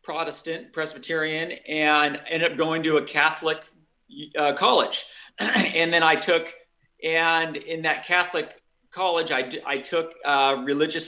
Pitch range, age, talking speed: 155-220 Hz, 40-59, 135 wpm